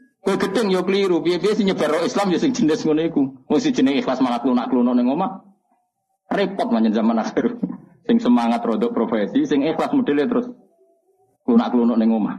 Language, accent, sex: Indonesian, native, male